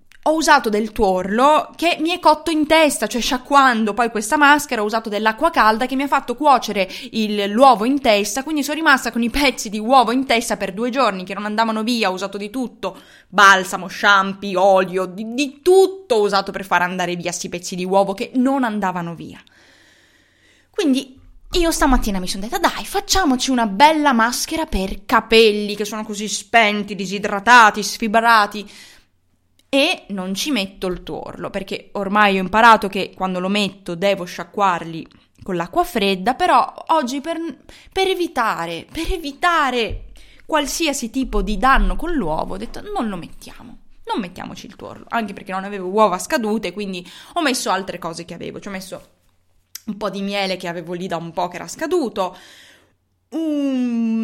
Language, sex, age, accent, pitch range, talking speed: Italian, female, 20-39, native, 195-270 Hz, 175 wpm